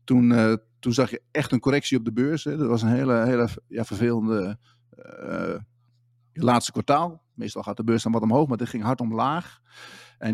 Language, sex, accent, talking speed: Dutch, male, Dutch, 205 wpm